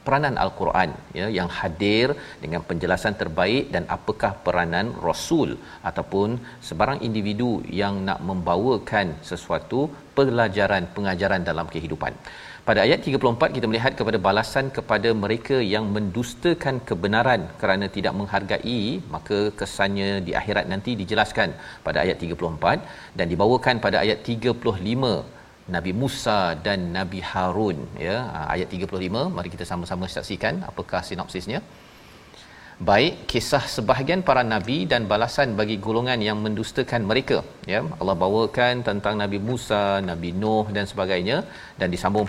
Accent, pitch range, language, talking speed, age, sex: Malaysian, 95-120 Hz, Malayalam, 130 wpm, 40-59, male